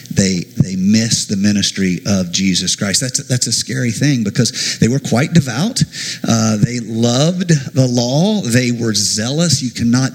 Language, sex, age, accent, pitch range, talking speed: English, male, 50-69, American, 110-140 Hz, 170 wpm